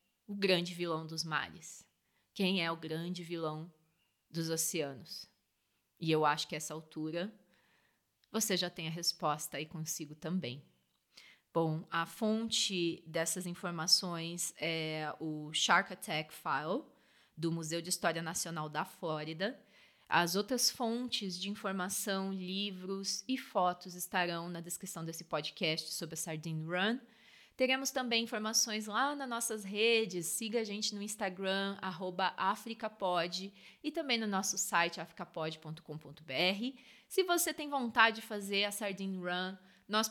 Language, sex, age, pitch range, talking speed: Portuguese, female, 20-39, 170-220 Hz, 135 wpm